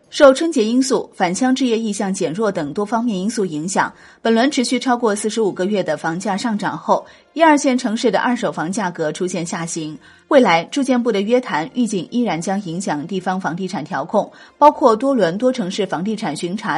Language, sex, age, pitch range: Chinese, female, 30-49, 185-245 Hz